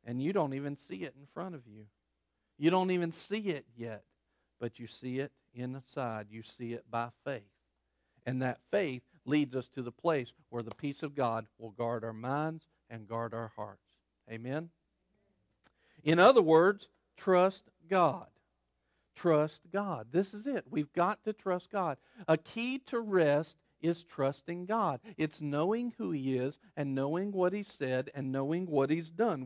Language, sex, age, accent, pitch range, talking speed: English, male, 50-69, American, 130-210 Hz, 175 wpm